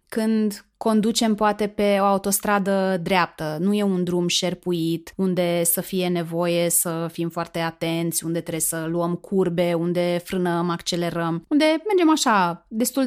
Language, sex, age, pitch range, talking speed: Romanian, female, 30-49, 175-235 Hz, 145 wpm